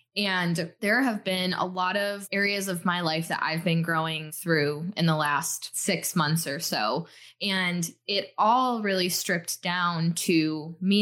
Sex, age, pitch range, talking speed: female, 10-29, 165-205 Hz, 170 wpm